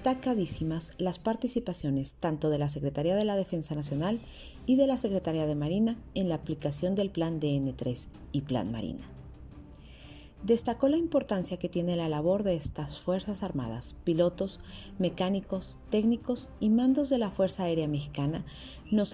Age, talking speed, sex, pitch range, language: 40-59, 155 wpm, female, 150-210 Hz, Spanish